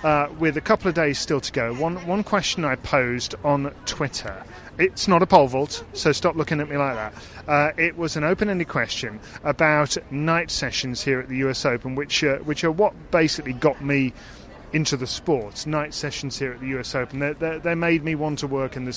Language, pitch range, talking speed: English, 125-155 Hz, 220 wpm